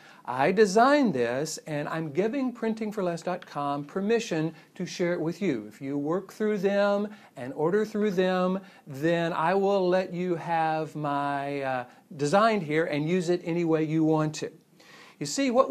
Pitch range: 145-195 Hz